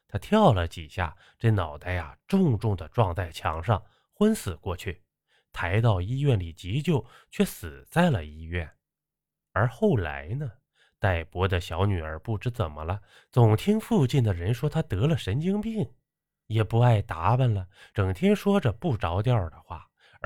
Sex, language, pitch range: male, Chinese, 90-130 Hz